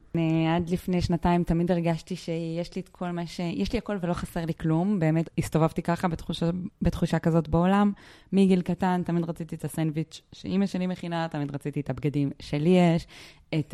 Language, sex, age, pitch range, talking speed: Hebrew, female, 20-39, 145-180 Hz, 165 wpm